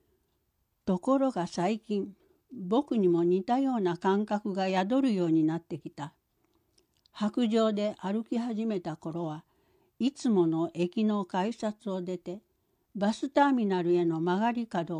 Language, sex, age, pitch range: Japanese, female, 60-79, 170-220 Hz